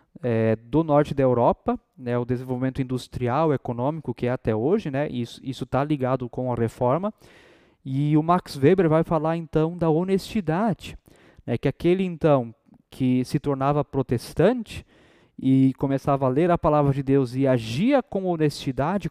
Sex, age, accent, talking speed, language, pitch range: male, 20-39, Brazilian, 155 wpm, Portuguese, 135-185 Hz